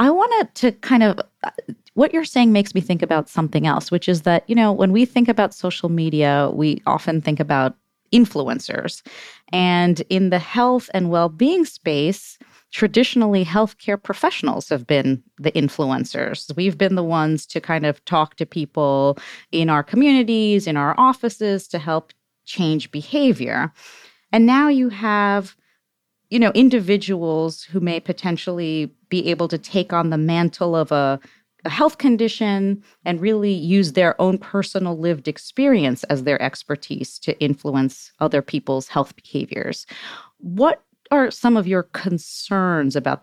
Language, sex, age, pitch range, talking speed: English, female, 30-49, 155-220 Hz, 155 wpm